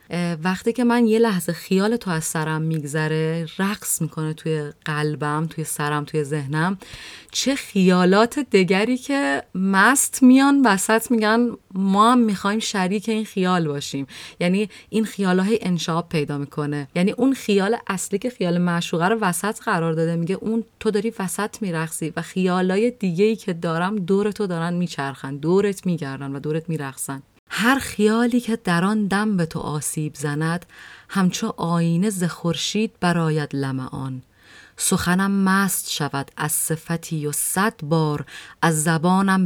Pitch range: 155-195 Hz